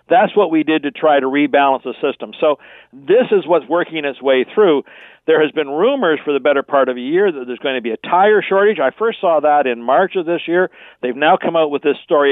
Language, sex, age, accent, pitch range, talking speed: English, male, 50-69, American, 145-195 Hz, 260 wpm